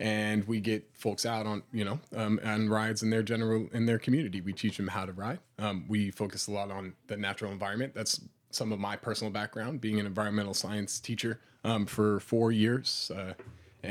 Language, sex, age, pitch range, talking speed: English, male, 30-49, 100-115 Hz, 205 wpm